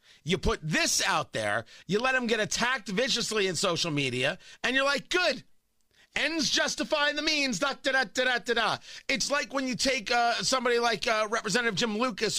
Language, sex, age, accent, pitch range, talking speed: English, male, 40-59, American, 215-270 Hz, 195 wpm